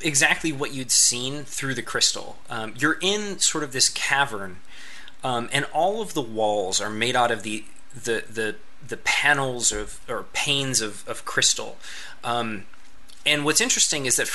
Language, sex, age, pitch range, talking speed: English, male, 20-39, 115-145 Hz, 170 wpm